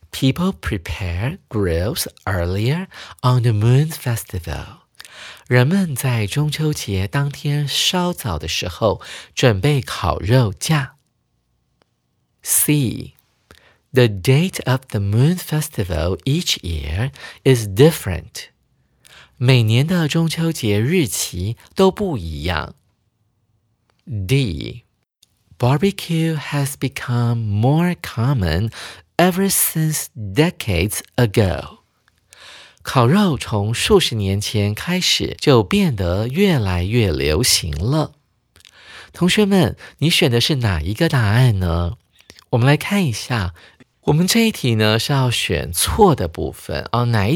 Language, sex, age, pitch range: Chinese, male, 50-69, 100-150 Hz